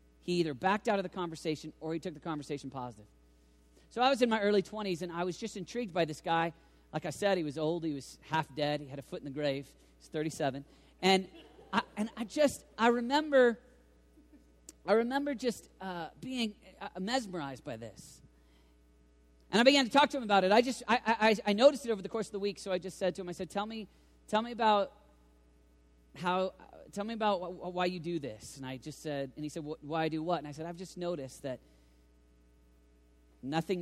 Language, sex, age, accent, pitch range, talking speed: English, male, 40-59, American, 135-190 Hz, 225 wpm